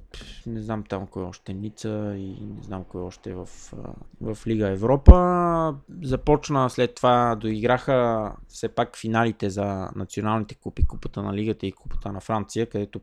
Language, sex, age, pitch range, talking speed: Bulgarian, male, 20-39, 105-135 Hz, 165 wpm